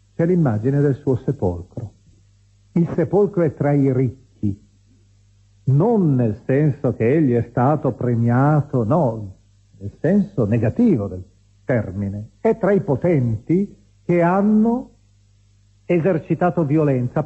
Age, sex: 50-69, male